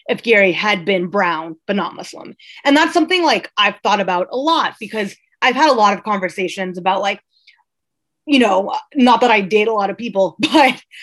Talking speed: 200 wpm